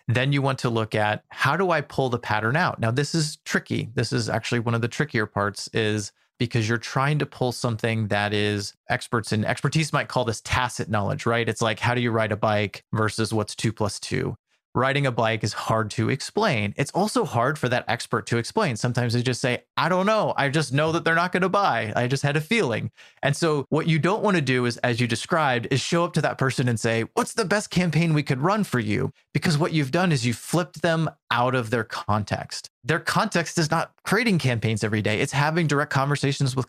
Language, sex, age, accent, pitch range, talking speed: English, male, 30-49, American, 115-150 Hz, 240 wpm